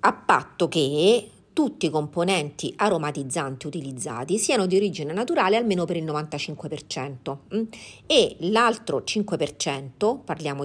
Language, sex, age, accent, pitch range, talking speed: Italian, female, 40-59, native, 145-195 Hz, 120 wpm